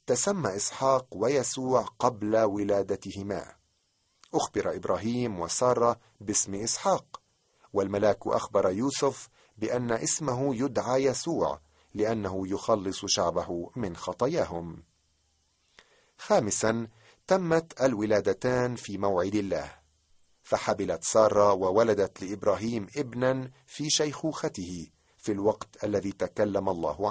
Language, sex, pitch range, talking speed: Arabic, male, 100-130 Hz, 90 wpm